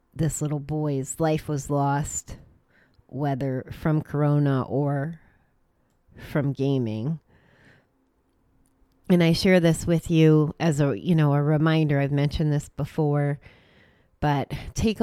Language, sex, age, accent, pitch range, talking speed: English, female, 30-49, American, 140-160 Hz, 120 wpm